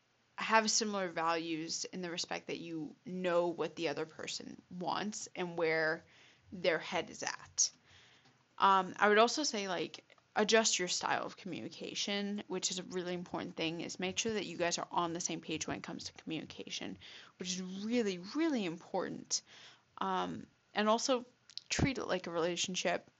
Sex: female